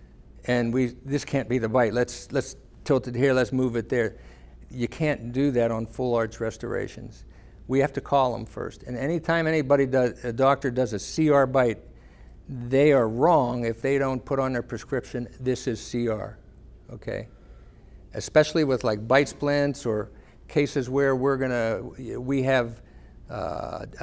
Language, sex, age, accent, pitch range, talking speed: English, male, 60-79, American, 115-140 Hz, 165 wpm